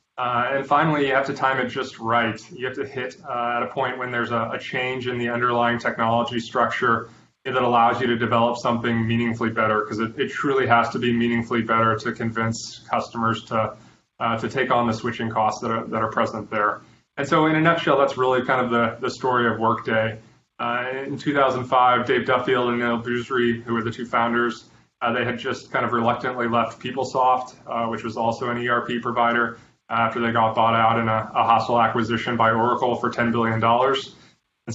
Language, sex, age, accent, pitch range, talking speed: English, male, 20-39, American, 115-125 Hz, 210 wpm